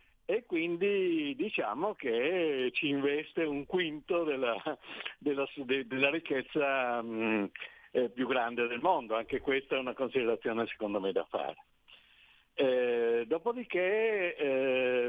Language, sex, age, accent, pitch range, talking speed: Italian, male, 50-69, native, 115-150 Hz, 125 wpm